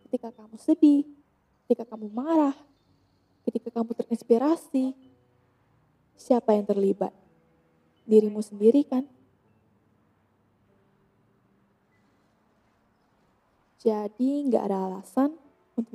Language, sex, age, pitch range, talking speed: Indonesian, female, 20-39, 205-250 Hz, 75 wpm